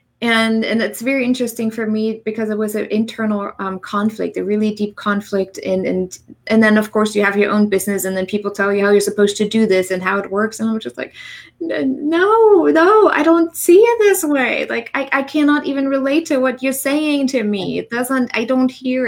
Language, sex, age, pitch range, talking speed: English, female, 20-39, 185-225 Hz, 235 wpm